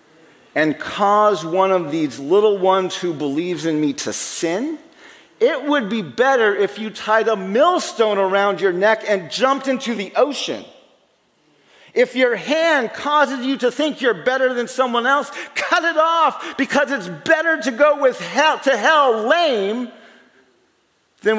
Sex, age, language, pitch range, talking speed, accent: male, 40-59, English, 215-295 Hz, 155 wpm, American